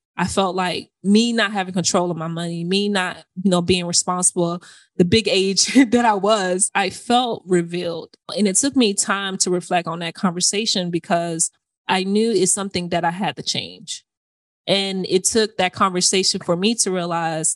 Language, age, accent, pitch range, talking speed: English, 20-39, American, 175-205 Hz, 185 wpm